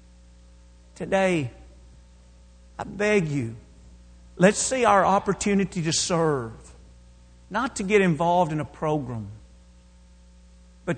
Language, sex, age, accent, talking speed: English, male, 50-69, American, 100 wpm